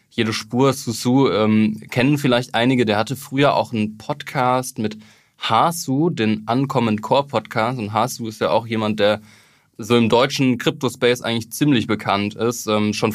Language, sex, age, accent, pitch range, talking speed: German, male, 20-39, German, 110-130 Hz, 165 wpm